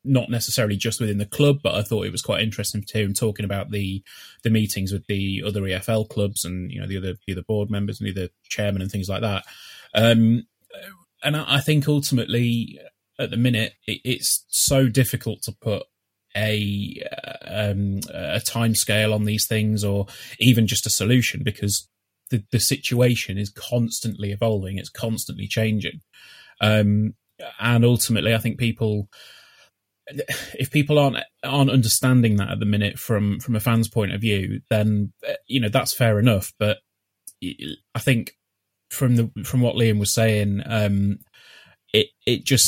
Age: 20-39